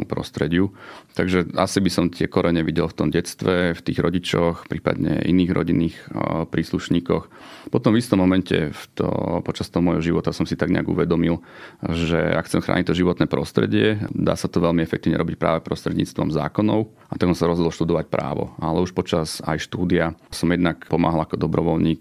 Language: Slovak